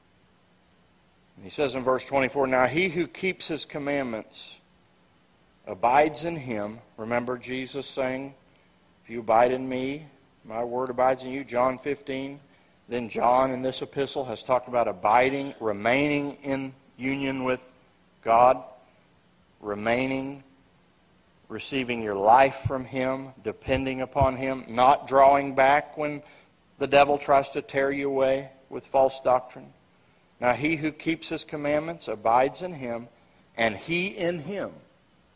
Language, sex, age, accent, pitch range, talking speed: English, male, 50-69, American, 130-155 Hz, 135 wpm